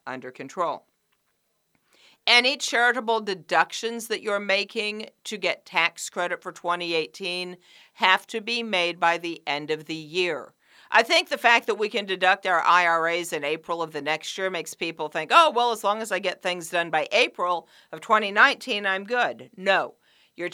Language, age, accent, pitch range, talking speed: English, 50-69, American, 165-225 Hz, 175 wpm